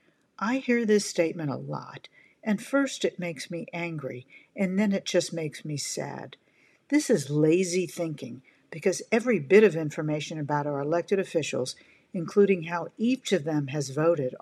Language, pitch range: English, 160-200 Hz